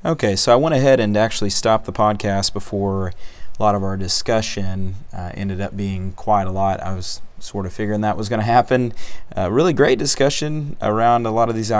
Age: 30-49